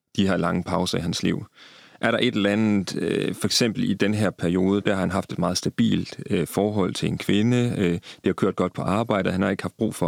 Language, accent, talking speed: Danish, native, 260 wpm